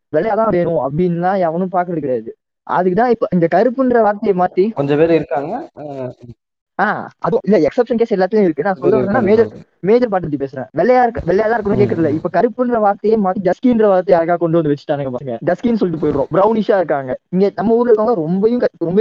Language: Tamil